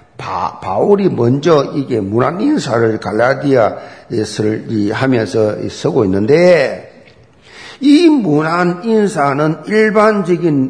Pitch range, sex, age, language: 135-210 Hz, male, 50-69, Korean